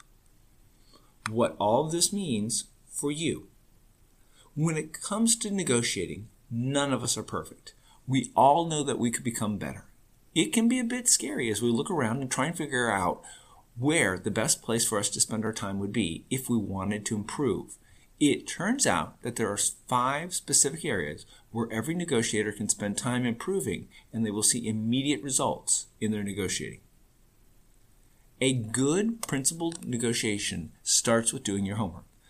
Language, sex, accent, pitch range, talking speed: English, male, American, 105-135 Hz, 170 wpm